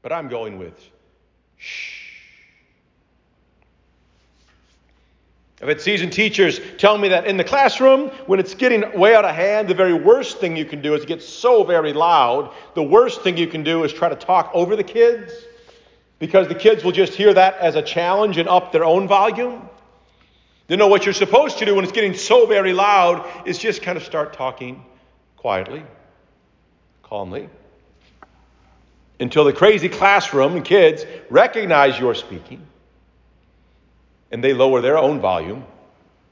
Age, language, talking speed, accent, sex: 40-59, English, 160 wpm, American, male